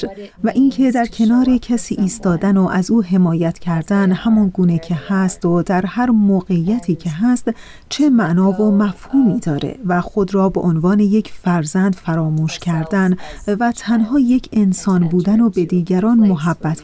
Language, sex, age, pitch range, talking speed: Persian, female, 30-49, 175-225 Hz, 155 wpm